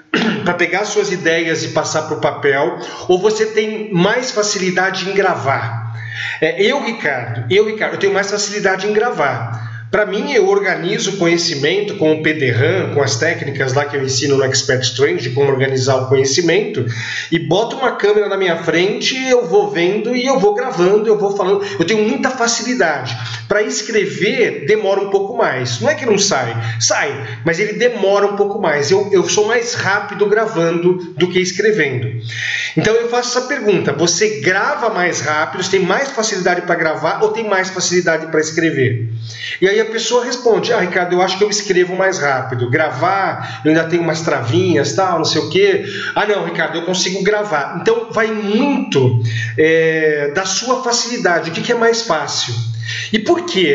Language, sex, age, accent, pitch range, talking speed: Portuguese, male, 40-59, Brazilian, 145-215 Hz, 185 wpm